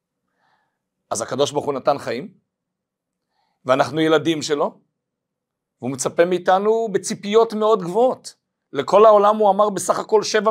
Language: Hebrew